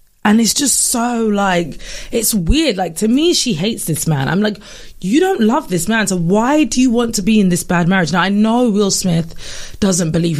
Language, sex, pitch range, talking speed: English, female, 165-215 Hz, 225 wpm